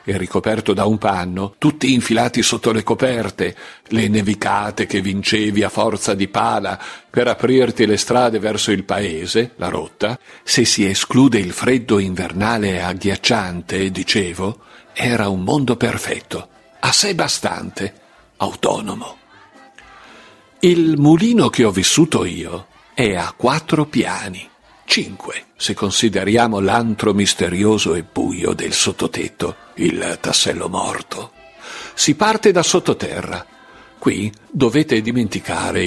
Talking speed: 120 wpm